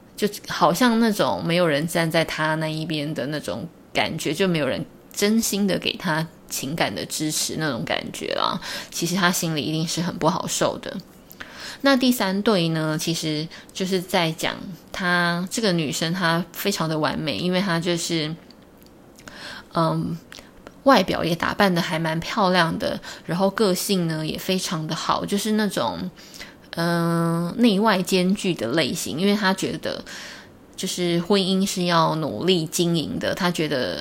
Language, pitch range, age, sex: Chinese, 160-185 Hz, 20-39, female